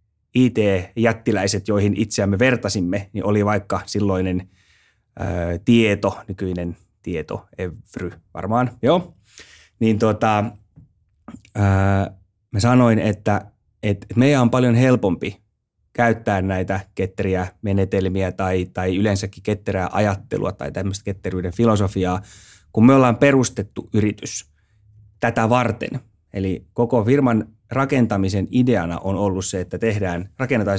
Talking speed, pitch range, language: 105 wpm, 95-115 Hz, Finnish